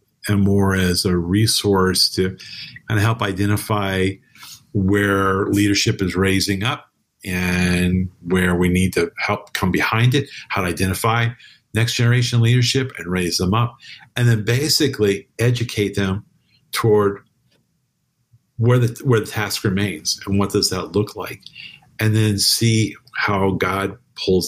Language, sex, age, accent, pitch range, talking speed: English, male, 50-69, American, 95-120 Hz, 140 wpm